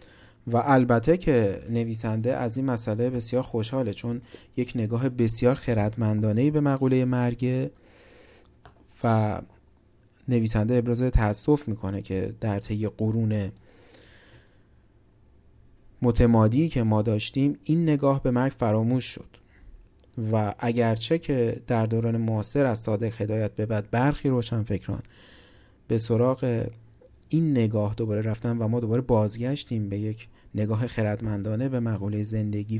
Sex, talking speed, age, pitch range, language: male, 125 wpm, 30-49, 110-130 Hz, Persian